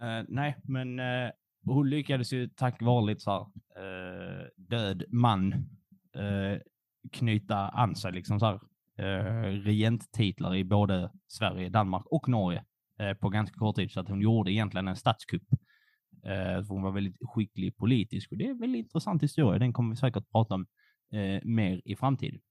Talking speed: 160 wpm